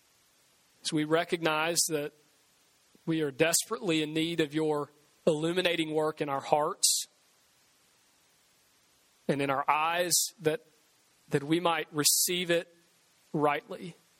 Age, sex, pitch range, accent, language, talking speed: 40-59, male, 150-195 Hz, American, English, 115 wpm